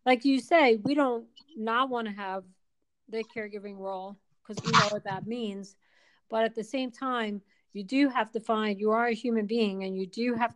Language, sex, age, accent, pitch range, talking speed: English, female, 40-59, American, 195-230 Hz, 210 wpm